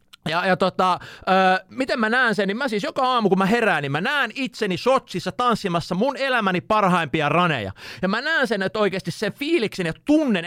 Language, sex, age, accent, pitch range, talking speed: Finnish, male, 30-49, native, 160-210 Hz, 205 wpm